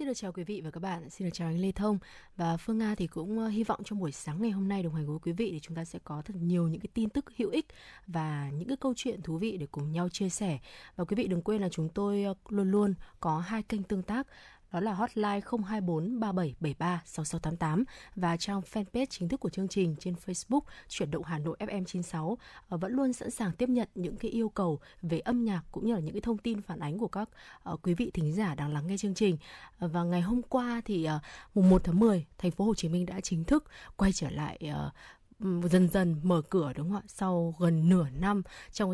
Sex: female